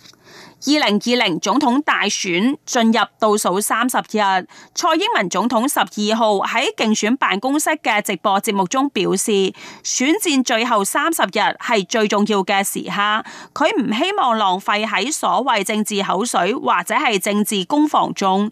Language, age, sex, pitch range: Chinese, 30-49, female, 200-265 Hz